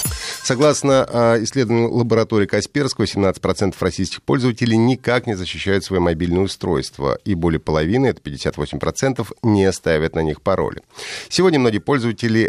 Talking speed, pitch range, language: 125 wpm, 90-130 Hz, Russian